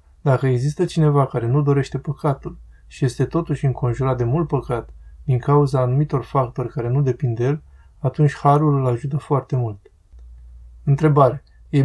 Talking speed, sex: 155 wpm, male